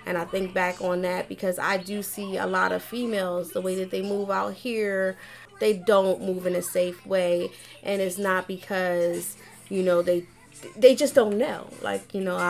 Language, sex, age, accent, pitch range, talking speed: English, female, 30-49, American, 175-200 Hz, 205 wpm